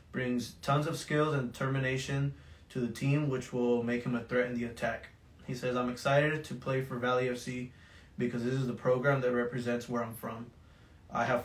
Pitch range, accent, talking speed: 120-140 Hz, American, 205 wpm